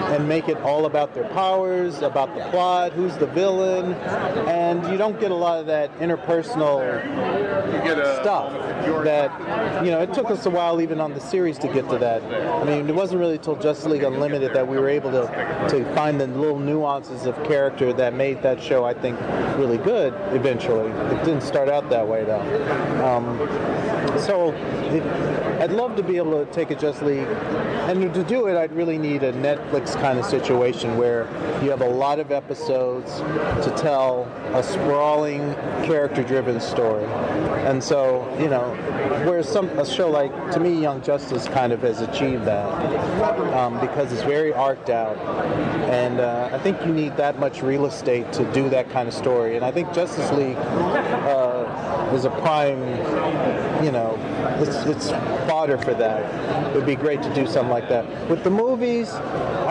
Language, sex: English, male